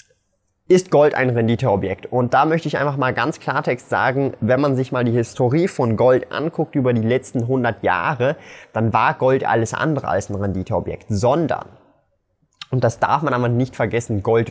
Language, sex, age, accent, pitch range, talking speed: German, male, 20-39, German, 115-145 Hz, 180 wpm